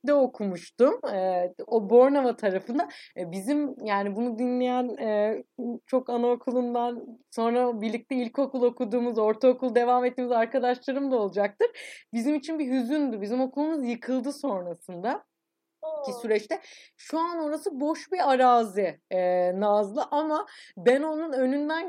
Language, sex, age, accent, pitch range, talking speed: Turkish, female, 30-49, native, 220-285 Hz, 120 wpm